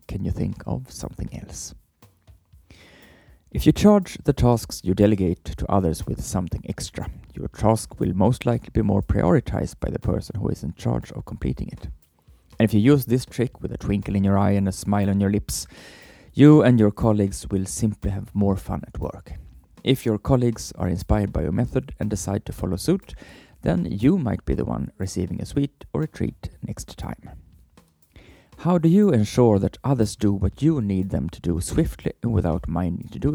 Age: 30-49